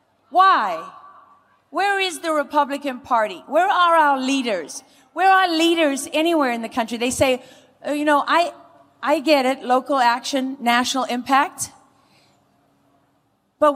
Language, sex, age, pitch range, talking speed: English, female, 40-59, 255-320 Hz, 135 wpm